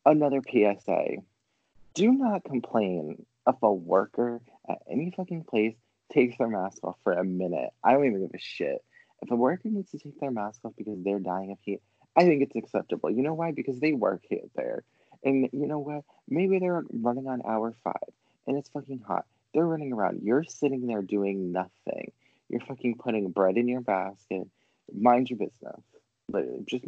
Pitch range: 105-150 Hz